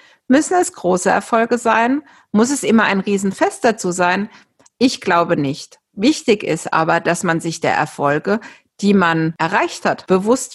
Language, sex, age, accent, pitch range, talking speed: German, female, 50-69, German, 170-230 Hz, 160 wpm